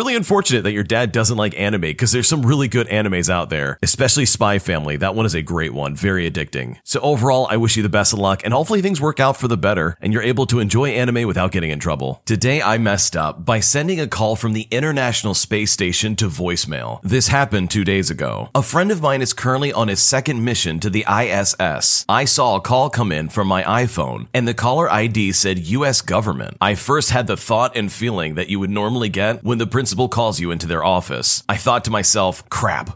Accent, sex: American, male